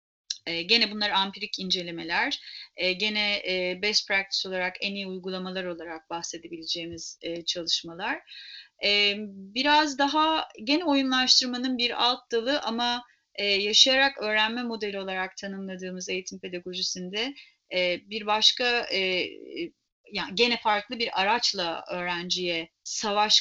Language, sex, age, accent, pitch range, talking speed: Turkish, female, 30-49, native, 175-220 Hz, 120 wpm